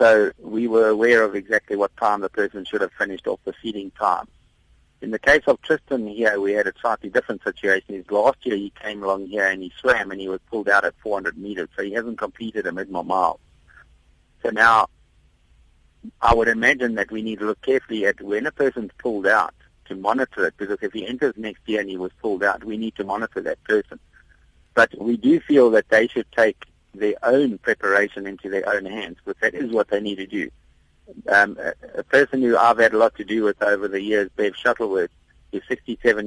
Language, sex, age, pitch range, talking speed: English, male, 50-69, 100-130 Hz, 220 wpm